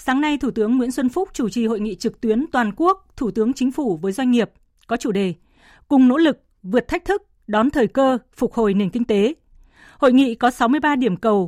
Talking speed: 235 wpm